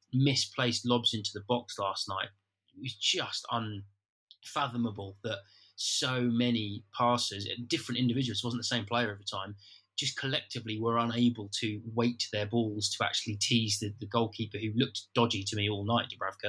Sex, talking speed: male, 170 wpm